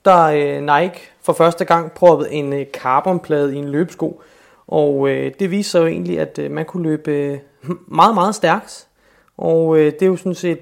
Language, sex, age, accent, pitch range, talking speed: Danish, male, 30-49, native, 140-165 Hz, 175 wpm